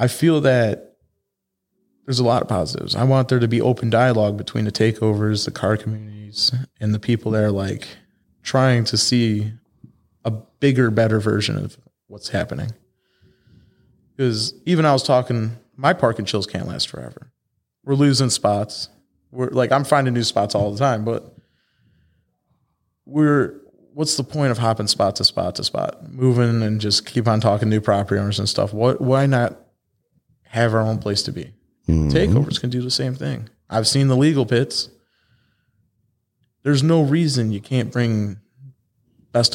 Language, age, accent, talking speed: English, 20-39, American, 165 wpm